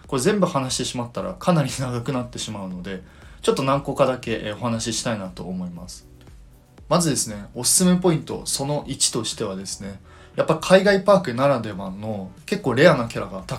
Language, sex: Japanese, male